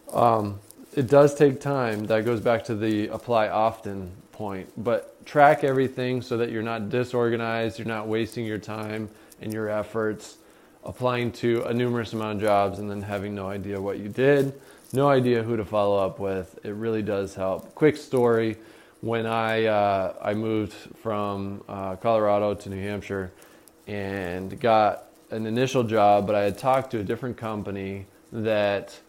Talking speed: 175 wpm